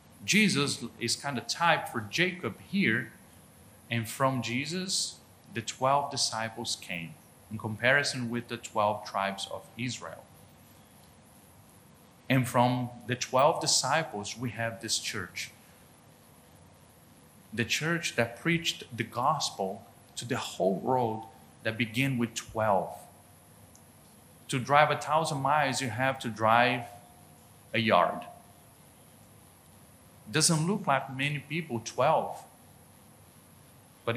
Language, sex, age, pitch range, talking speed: English, male, 40-59, 110-140 Hz, 110 wpm